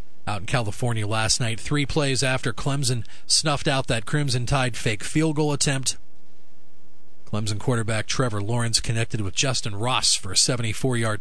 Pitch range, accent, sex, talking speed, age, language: 105-135 Hz, American, male, 155 wpm, 40-59, English